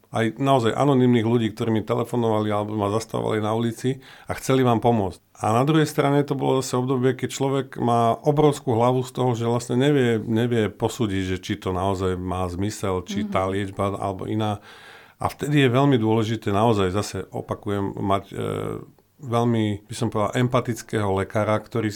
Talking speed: 175 wpm